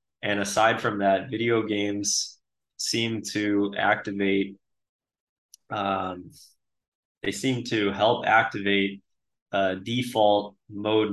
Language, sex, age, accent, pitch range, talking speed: English, male, 20-39, American, 100-110 Hz, 95 wpm